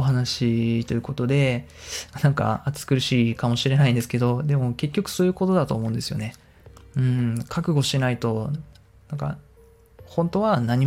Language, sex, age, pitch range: Japanese, male, 20-39, 110-140 Hz